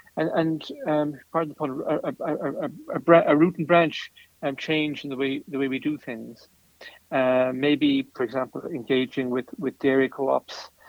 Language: English